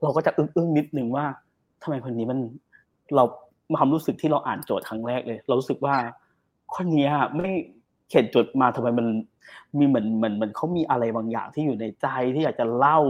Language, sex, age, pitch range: Thai, male, 20-39, 115-145 Hz